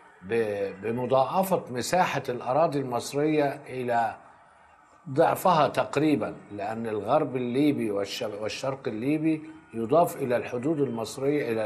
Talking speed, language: 90 wpm, Arabic